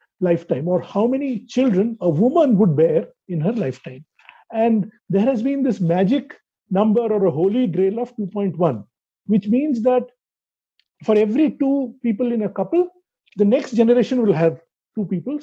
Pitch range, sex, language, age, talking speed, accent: 195-255 Hz, male, English, 50-69, 165 wpm, Indian